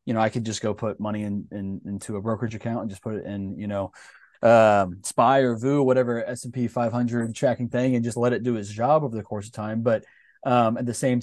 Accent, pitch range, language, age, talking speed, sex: American, 100-120 Hz, English, 20-39, 265 wpm, male